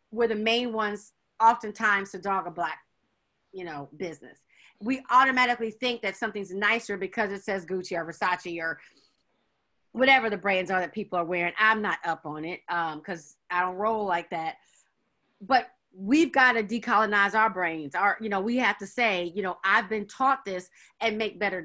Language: English